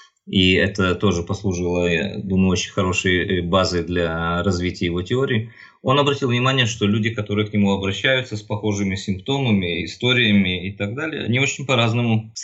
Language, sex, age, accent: Russian, male, 20-39, native